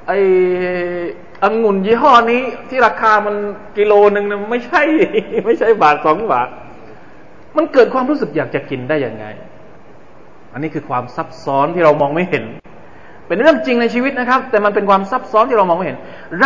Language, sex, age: Thai, male, 20-39